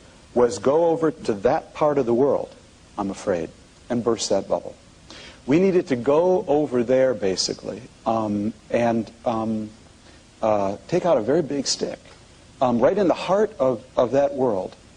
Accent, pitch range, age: American, 105-145 Hz, 60-79